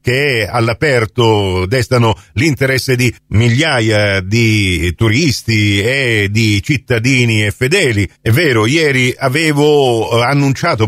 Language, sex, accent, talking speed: Italian, male, native, 100 wpm